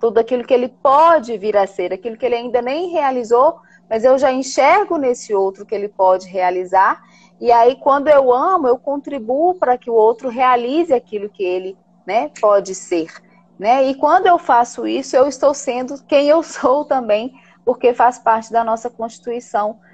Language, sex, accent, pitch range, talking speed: Portuguese, female, Brazilian, 210-280 Hz, 185 wpm